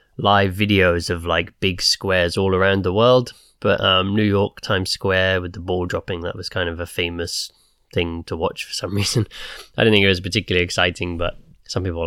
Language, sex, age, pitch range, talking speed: English, male, 20-39, 90-115 Hz, 210 wpm